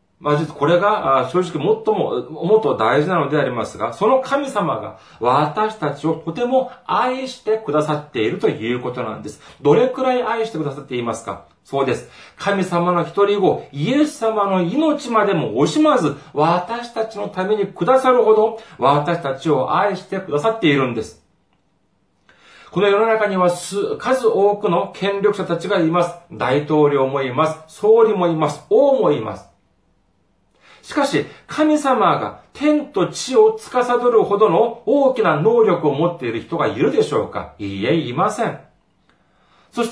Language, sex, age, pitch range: Japanese, male, 40-59, 150-240 Hz